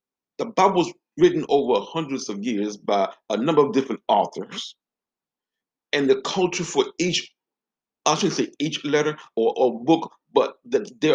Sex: male